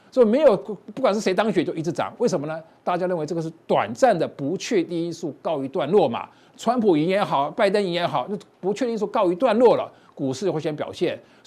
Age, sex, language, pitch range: 50-69, male, Chinese, 165-230 Hz